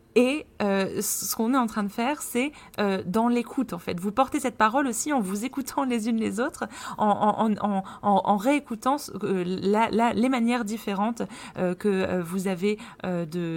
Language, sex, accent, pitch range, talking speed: French, female, French, 185-235 Hz, 190 wpm